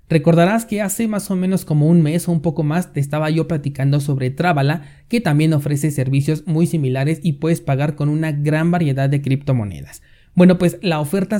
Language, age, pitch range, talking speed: Spanish, 30-49, 135-170 Hz, 200 wpm